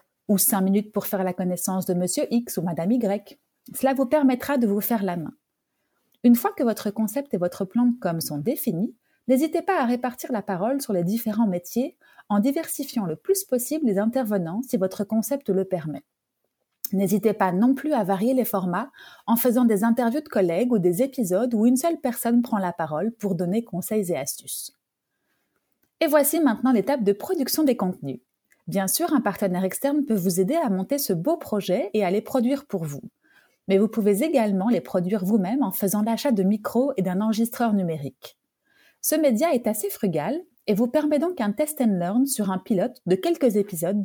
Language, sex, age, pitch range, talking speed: French, female, 30-49, 195-260 Hz, 200 wpm